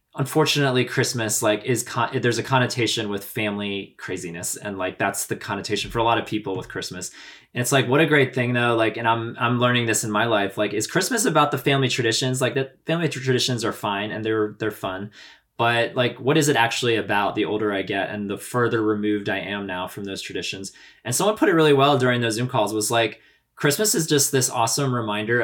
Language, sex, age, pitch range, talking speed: English, male, 20-39, 105-130 Hz, 225 wpm